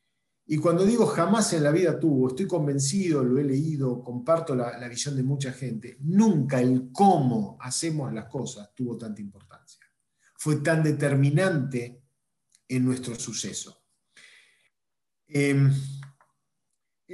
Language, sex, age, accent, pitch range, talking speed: Spanish, male, 40-59, Argentinian, 125-165 Hz, 125 wpm